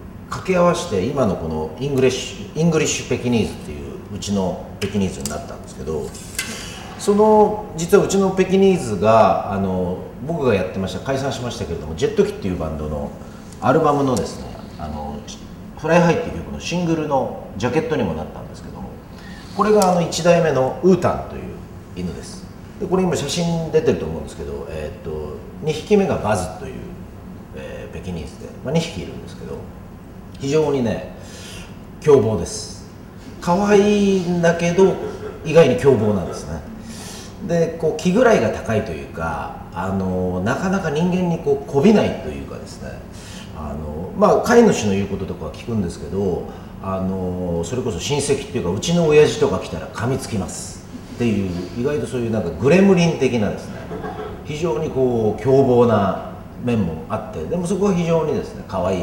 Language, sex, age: Japanese, male, 40-59